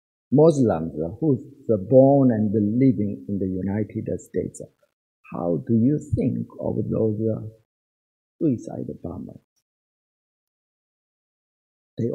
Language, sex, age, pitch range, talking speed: English, male, 50-69, 115-150 Hz, 115 wpm